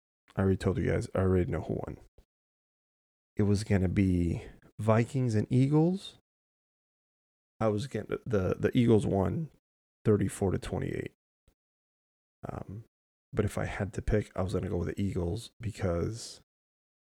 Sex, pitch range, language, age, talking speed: male, 90-110 Hz, English, 30-49, 155 wpm